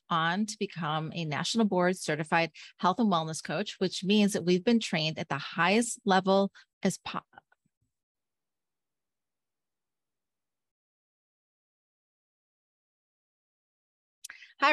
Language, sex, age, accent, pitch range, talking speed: English, female, 30-49, American, 170-210 Hz, 100 wpm